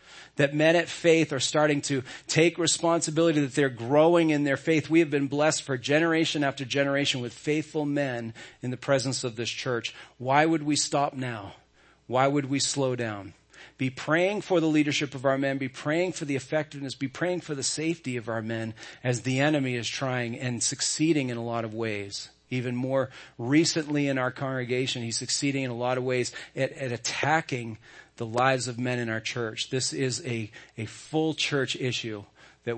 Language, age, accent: English, 40-59, American